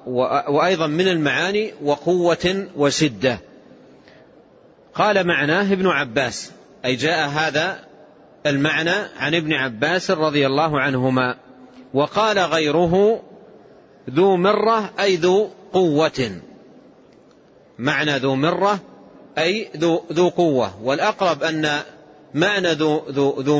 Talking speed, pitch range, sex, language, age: 90 wpm, 145-180 Hz, male, Arabic, 40-59